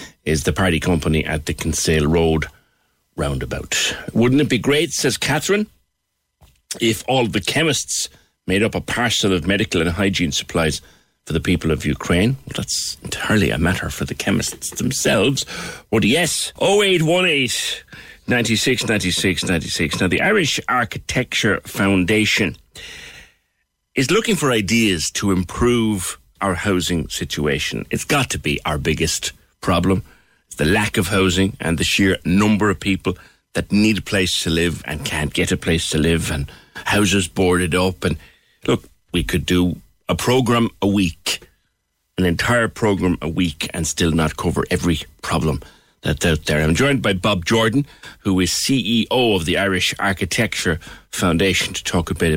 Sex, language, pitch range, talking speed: male, English, 85-110 Hz, 155 wpm